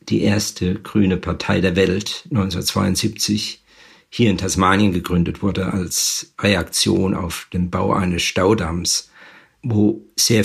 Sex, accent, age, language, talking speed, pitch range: male, German, 50-69, German, 120 wpm, 95-110 Hz